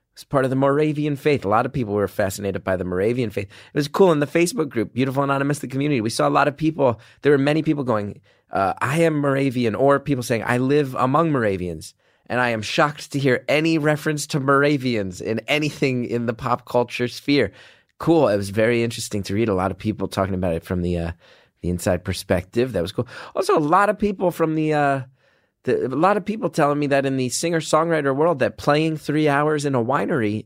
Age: 30-49